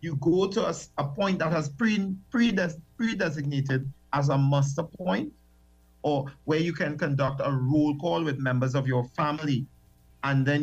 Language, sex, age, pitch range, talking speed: English, male, 50-69, 130-170 Hz, 160 wpm